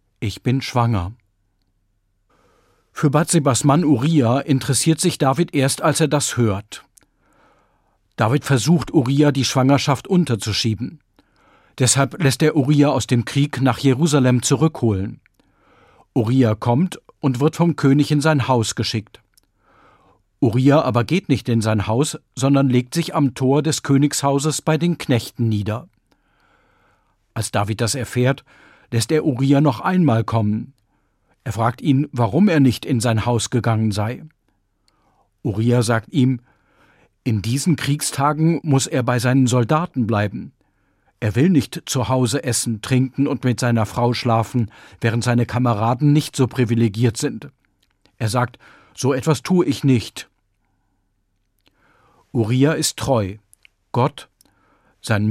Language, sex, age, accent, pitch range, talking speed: German, male, 50-69, German, 115-145 Hz, 135 wpm